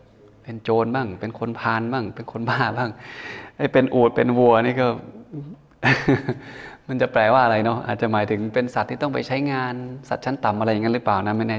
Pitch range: 110-125 Hz